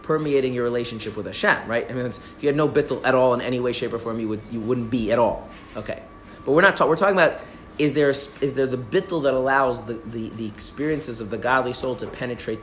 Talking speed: 260 wpm